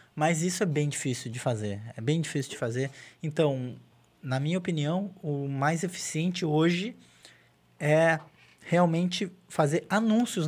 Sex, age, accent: male, 20-39, Brazilian